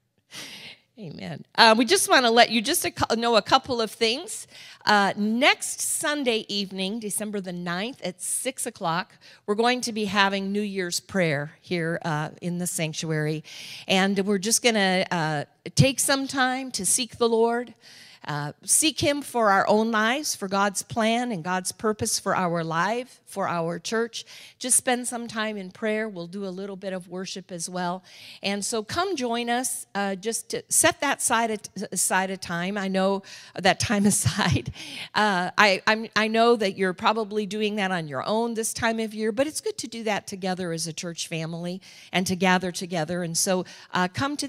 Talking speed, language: 185 wpm, English